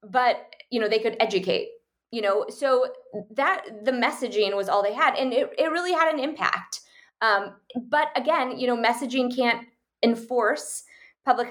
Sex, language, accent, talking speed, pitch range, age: female, English, American, 165 wpm, 205-285 Hz, 20-39